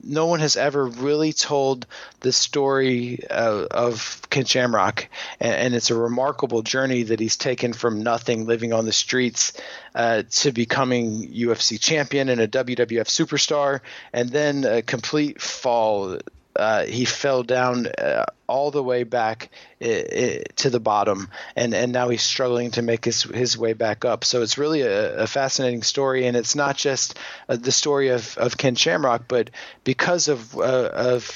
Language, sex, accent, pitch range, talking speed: English, male, American, 120-140 Hz, 170 wpm